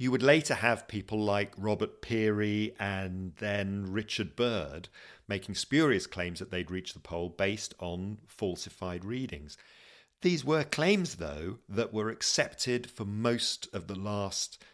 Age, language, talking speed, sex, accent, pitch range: 50-69, English, 145 wpm, male, British, 90-120 Hz